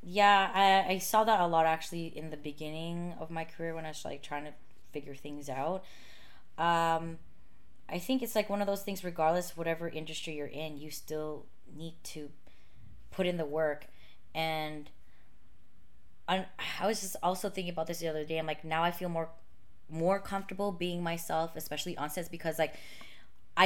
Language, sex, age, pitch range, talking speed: English, female, 20-39, 145-170 Hz, 185 wpm